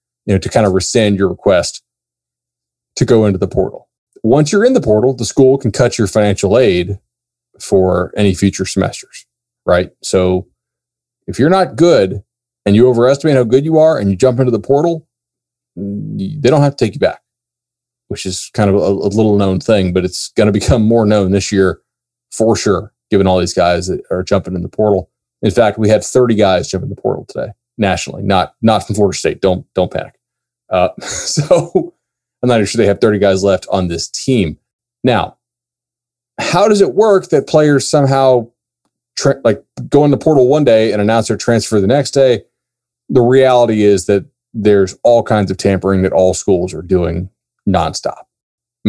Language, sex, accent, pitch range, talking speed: English, male, American, 95-120 Hz, 190 wpm